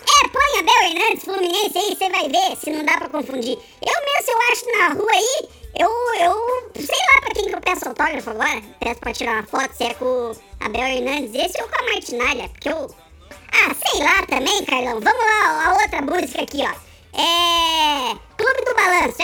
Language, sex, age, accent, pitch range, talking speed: Portuguese, male, 20-39, Brazilian, 290-435 Hz, 205 wpm